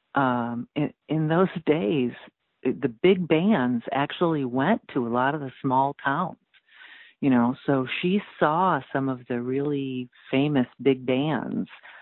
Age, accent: 50-69, American